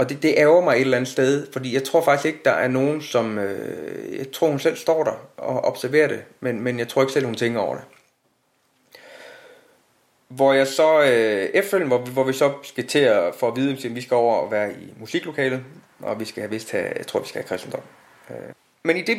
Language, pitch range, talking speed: Danish, 120-165 Hz, 240 wpm